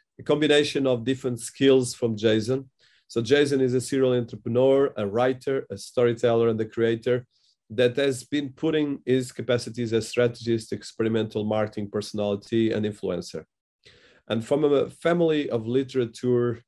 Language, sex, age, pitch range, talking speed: English, male, 40-59, 110-130 Hz, 140 wpm